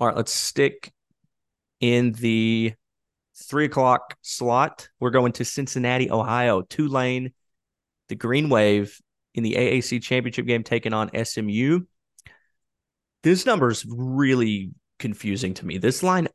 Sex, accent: male, American